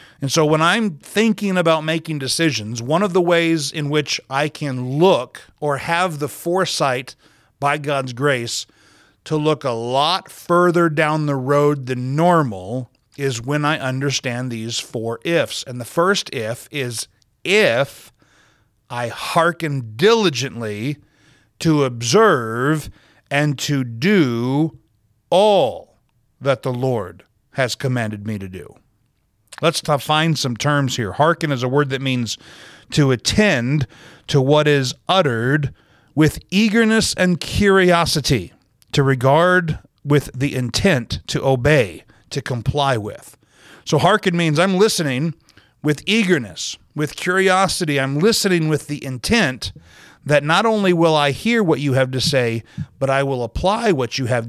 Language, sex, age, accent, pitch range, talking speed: English, male, 50-69, American, 120-160 Hz, 140 wpm